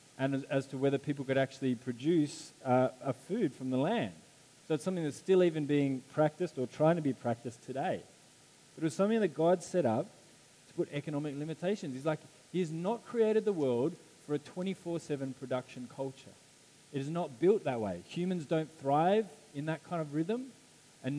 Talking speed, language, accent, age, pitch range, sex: 190 wpm, English, Australian, 20-39, 135-170 Hz, male